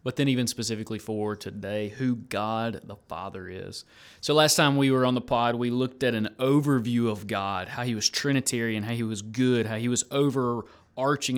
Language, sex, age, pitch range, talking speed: English, male, 20-39, 110-135 Hz, 200 wpm